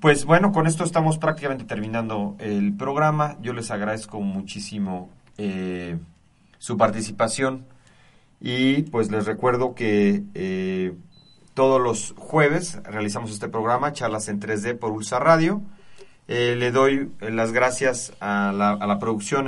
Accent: Mexican